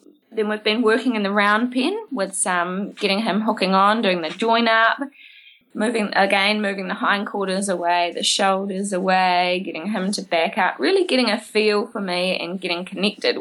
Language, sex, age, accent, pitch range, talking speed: English, female, 20-39, Australian, 185-225 Hz, 180 wpm